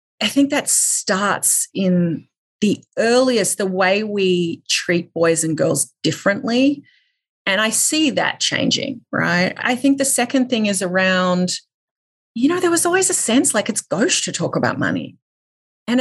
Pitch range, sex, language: 170-235 Hz, female, English